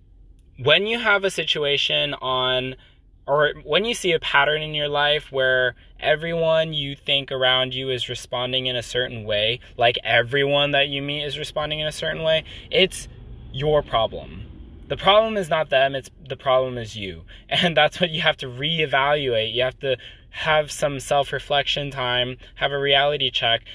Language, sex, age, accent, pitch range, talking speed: English, male, 20-39, American, 115-150 Hz, 175 wpm